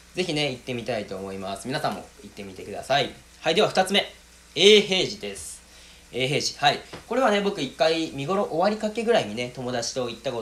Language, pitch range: Japanese, 105-170 Hz